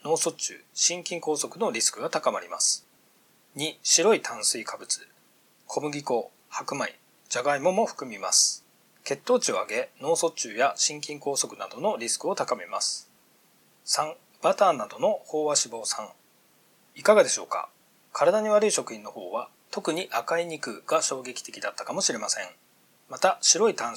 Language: Japanese